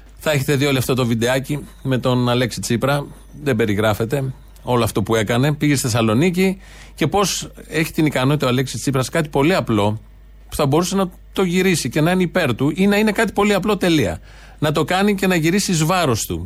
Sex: male